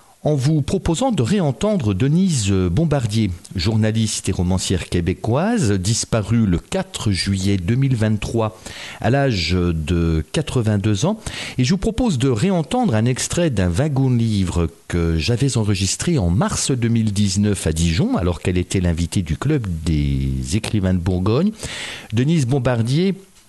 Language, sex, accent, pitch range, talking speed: French, male, French, 95-145 Hz, 130 wpm